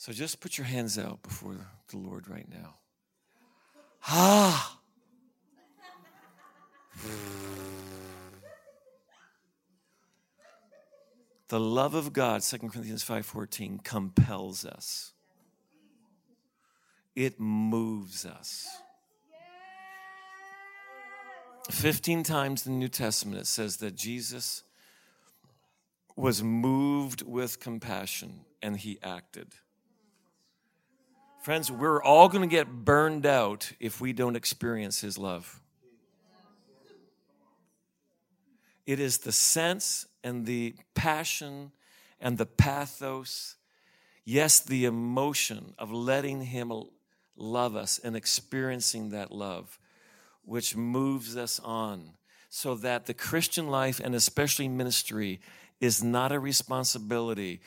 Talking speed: 95 wpm